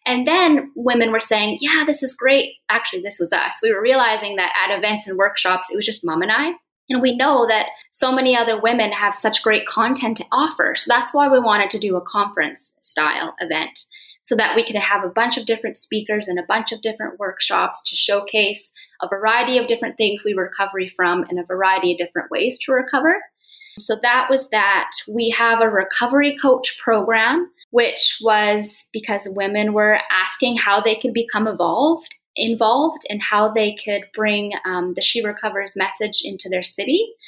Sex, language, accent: female, English, American